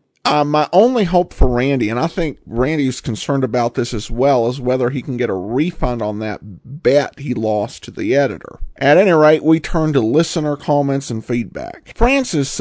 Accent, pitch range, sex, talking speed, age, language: American, 125-165 Hz, male, 195 wpm, 40-59, English